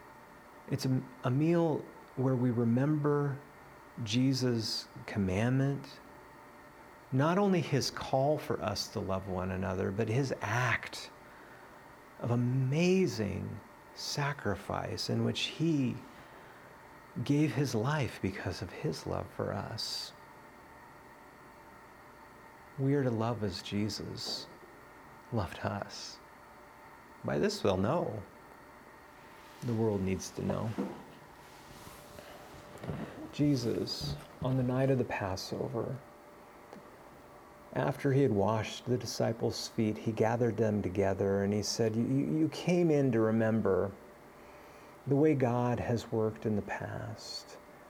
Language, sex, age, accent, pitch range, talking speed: English, male, 40-59, American, 110-140 Hz, 110 wpm